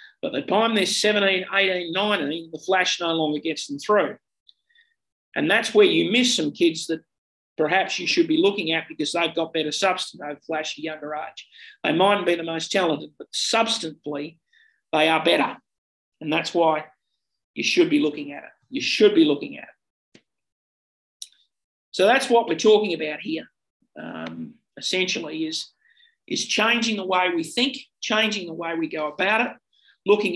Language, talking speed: English, 175 wpm